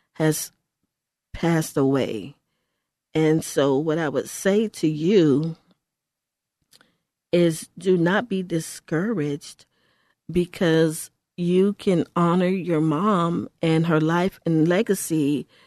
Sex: female